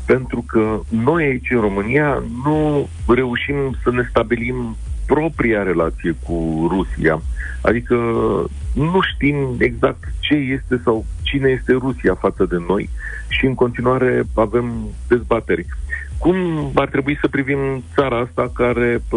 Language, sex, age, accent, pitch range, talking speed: Romanian, male, 40-59, native, 85-120 Hz, 130 wpm